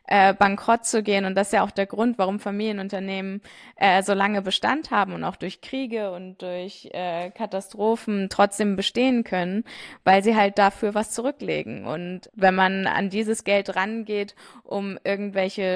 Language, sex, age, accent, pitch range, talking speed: German, female, 20-39, German, 185-210 Hz, 170 wpm